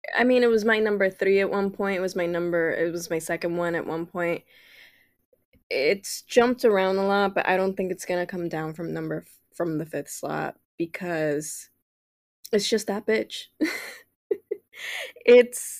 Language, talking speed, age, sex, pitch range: English, 180 wpm, 10-29, female, 165-195 Hz